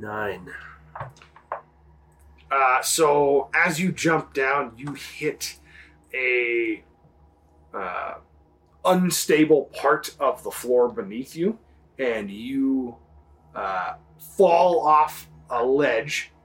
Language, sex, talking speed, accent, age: English, male, 90 wpm, American, 30-49